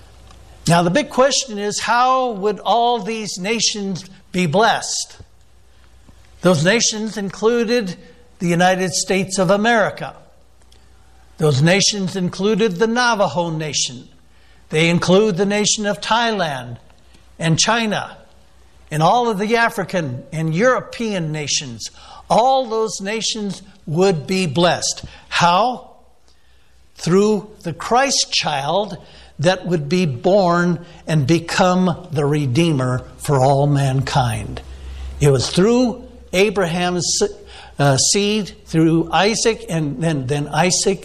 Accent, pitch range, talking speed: American, 150-210 Hz, 110 wpm